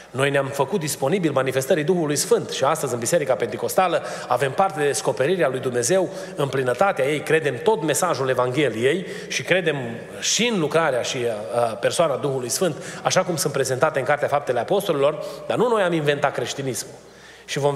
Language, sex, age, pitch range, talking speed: Romanian, male, 30-49, 150-200 Hz, 170 wpm